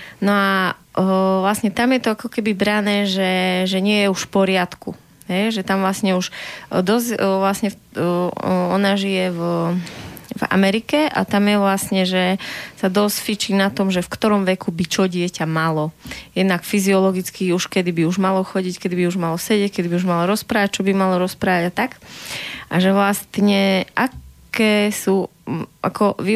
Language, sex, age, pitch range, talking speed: Slovak, female, 20-39, 180-205 Hz, 180 wpm